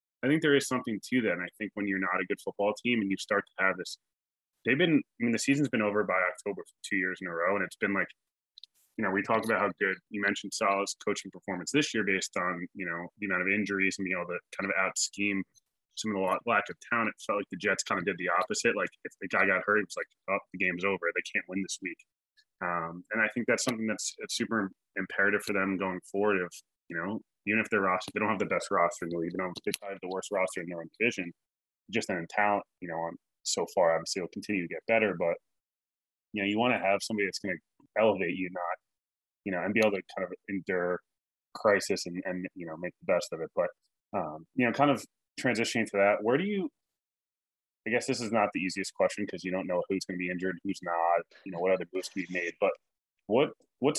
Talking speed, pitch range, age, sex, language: 260 wpm, 90-110 Hz, 20-39, male, English